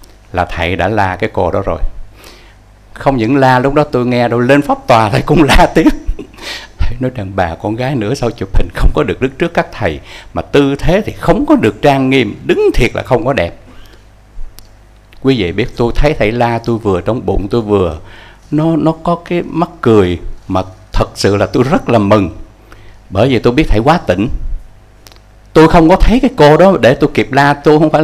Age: 60-79